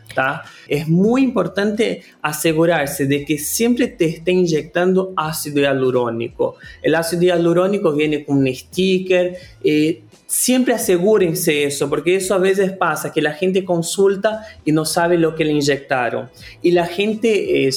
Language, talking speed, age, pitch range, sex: Spanish, 150 wpm, 30-49, 145-190 Hz, male